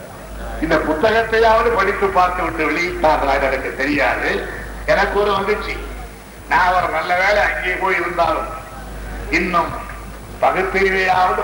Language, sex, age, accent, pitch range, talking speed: Tamil, male, 60-79, native, 200-245 Hz, 90 wpm